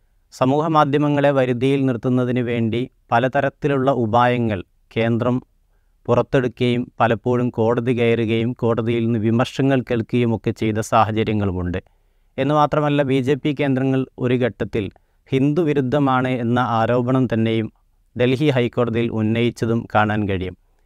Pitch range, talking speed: 110-130 Hz, 100 wpm